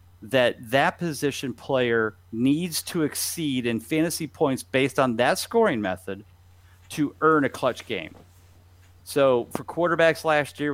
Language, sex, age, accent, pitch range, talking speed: English, male, 40-59, American, 110-145 Hz, 140 wpm